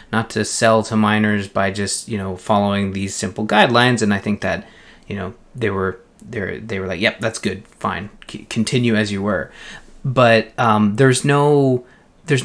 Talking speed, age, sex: 195 wpm, 20-39, male